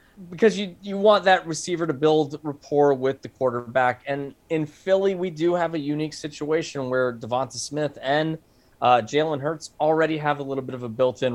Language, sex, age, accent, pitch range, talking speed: English, male, 20-39, American, 120-155 Hz, 190 wpm